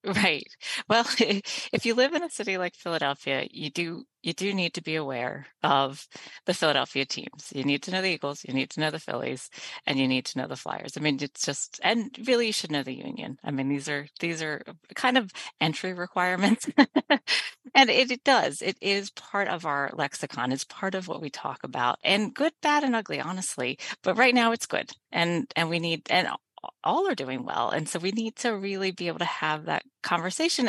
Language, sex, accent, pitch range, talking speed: English, female, American, 155-225 Hz, 215 wpm